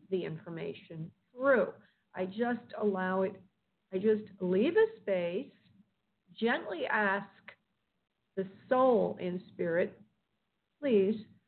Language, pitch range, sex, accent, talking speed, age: English, 190-245 Hz, female, American, 100 wpm, 50-69